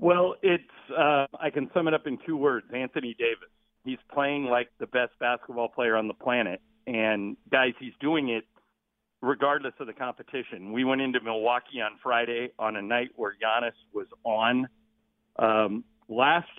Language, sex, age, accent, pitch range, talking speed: English, male, 50-69, American, 115-140 Hz, 170 wpm